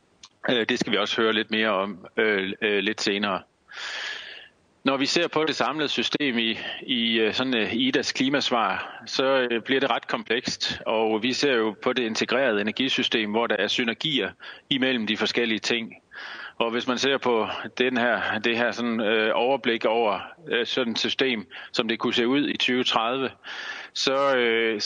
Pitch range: 110-130 Hz